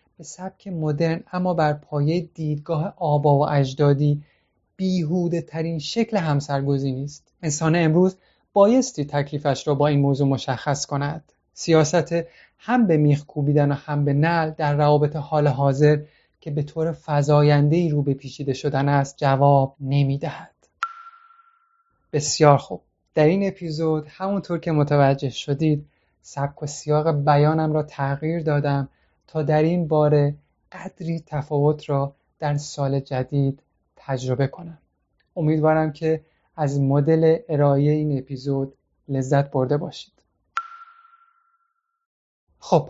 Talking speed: 120 wpm